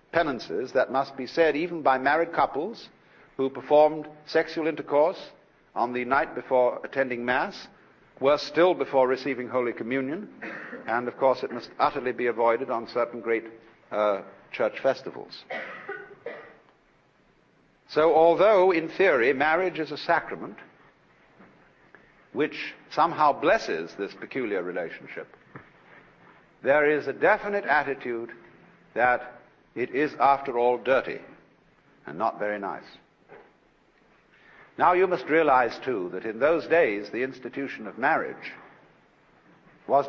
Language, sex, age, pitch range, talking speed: English, male, 60-79, 120-155 Hz, 120 wpm